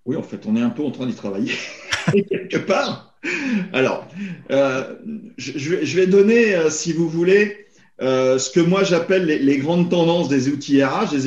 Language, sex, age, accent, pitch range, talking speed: French, male, 40-59, French, 120-185 Hz, 190 wpm